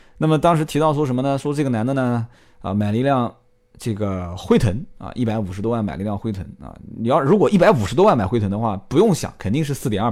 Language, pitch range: Chinese, 105-145 Hz